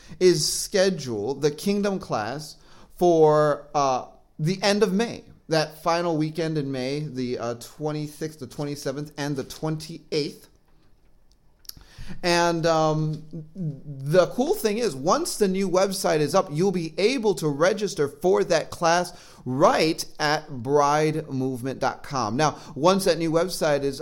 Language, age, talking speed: English, 30-49, 130 wpm